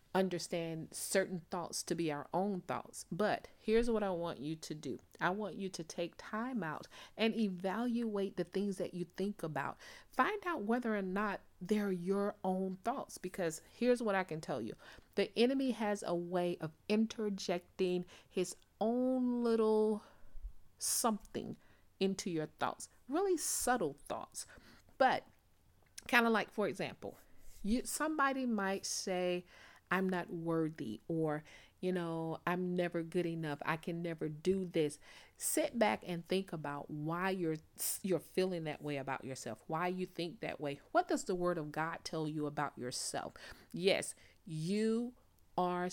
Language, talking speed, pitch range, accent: English, 155 wpm, 165-220 Hz, American